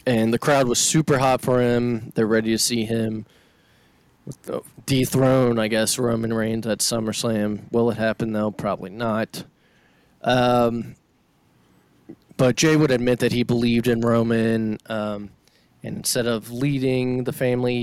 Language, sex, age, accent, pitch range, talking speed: English, male, 20-39, American, 115-135 Hz, 145 wpm